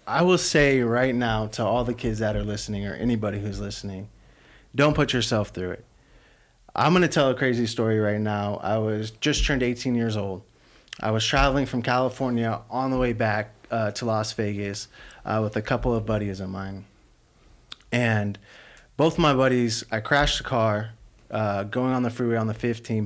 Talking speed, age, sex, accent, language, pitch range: 195 wpm, 30-49, male, American, English, 105-130 Hz